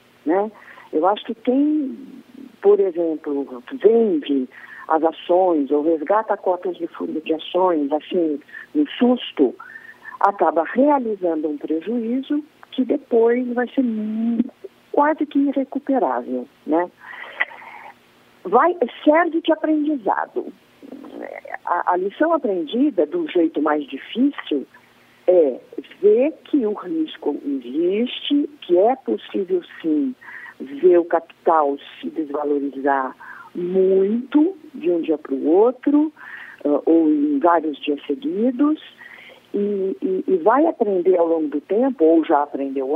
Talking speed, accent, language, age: 115 wpm, Brazilian, Portuguese, 50-69